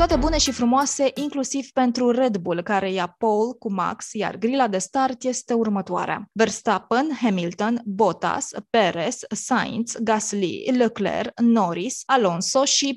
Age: 20-39